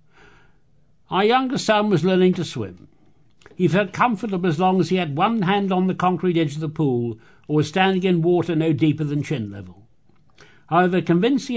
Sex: male